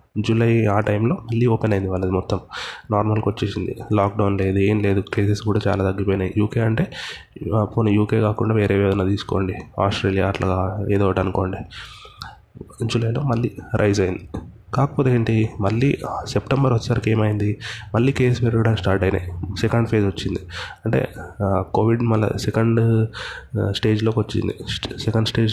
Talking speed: 135 wpm